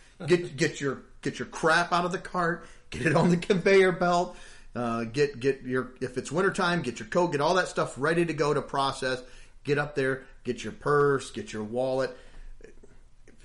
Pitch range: 135-190 Hz